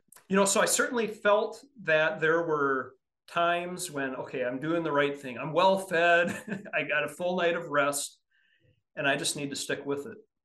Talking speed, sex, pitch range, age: 200 wpm, male, 130-190 Hz, 30-49